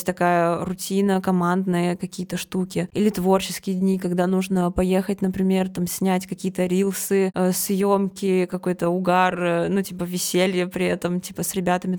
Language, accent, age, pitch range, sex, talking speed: Russian, native, 20-39, 175-190 Hz, female, 135 wpm